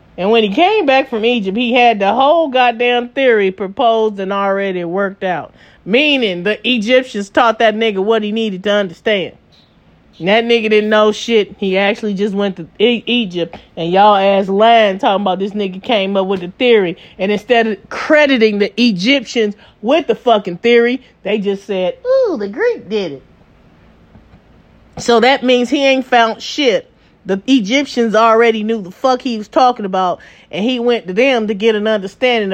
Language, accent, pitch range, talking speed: English, American, 210-275 Hz, 180 wpm